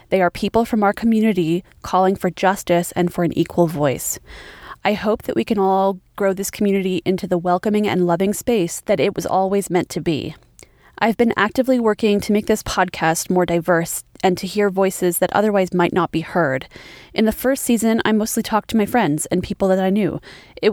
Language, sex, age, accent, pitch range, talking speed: English, female, 20-39, American, 175-220 Hz, 210 wpm